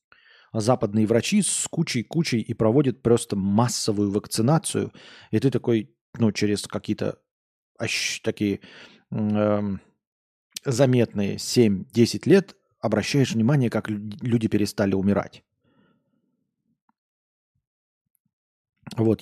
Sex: male